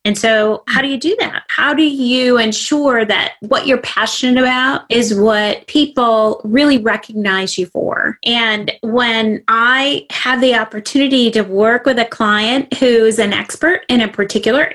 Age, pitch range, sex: 30-49, 215-255 Hz, female